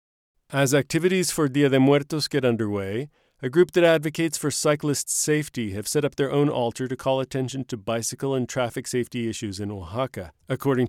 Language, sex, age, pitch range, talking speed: English, male, 40-59, 120-140 Hz, 180 wpm